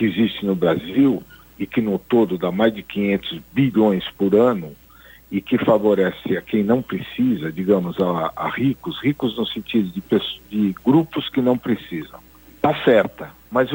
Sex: male